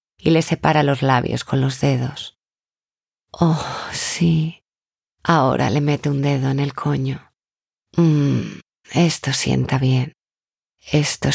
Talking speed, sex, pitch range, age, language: 120 wpm, female, 125-145 Hz, 30-49, Spanish